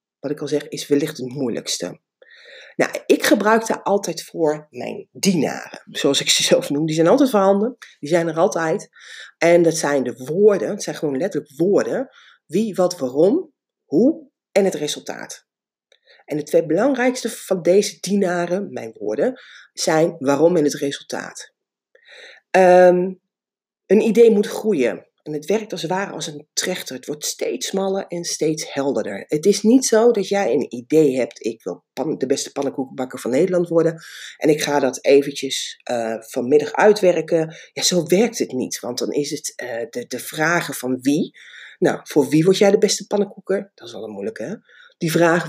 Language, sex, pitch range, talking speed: Dutch, female, 145-205 Hz, 180 wpm